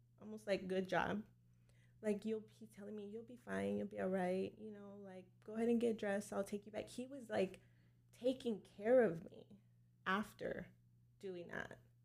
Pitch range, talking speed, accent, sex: 120-200 Hz, 190 wpm, American, female